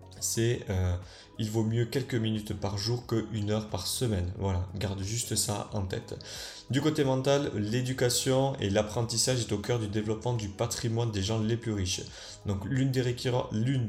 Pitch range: 100-125 Hz